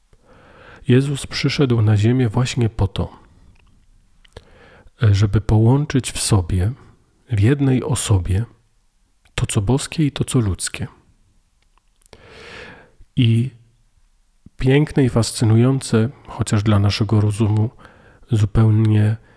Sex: male